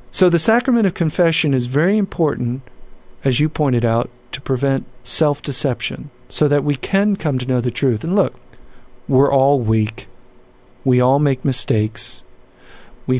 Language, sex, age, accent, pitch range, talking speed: English, male, 50-69, American, 125-150 Hz, 155 wpm